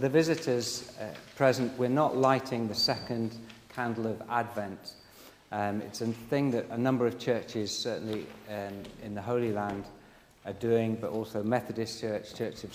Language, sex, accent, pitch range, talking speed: English, male, British, 100-115 Hz, 165 wpm